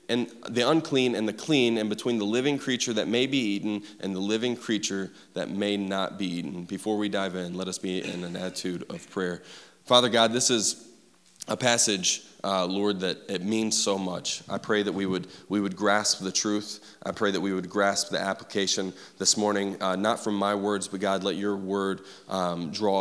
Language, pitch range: English, 95-110 Hz